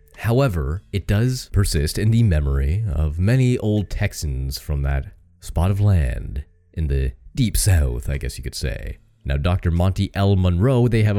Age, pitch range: 30-49, 75-100 Hz